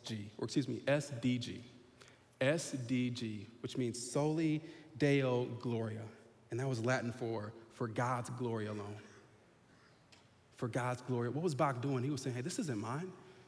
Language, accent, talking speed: English, American, 145 wpm